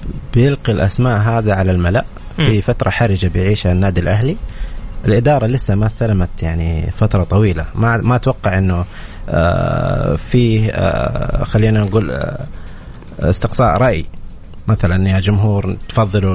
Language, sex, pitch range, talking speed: Arabic, male, 90-120 Hz, 110 wpm